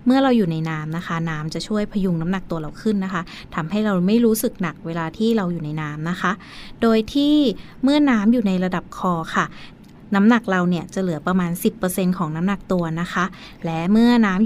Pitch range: 170-225 Hz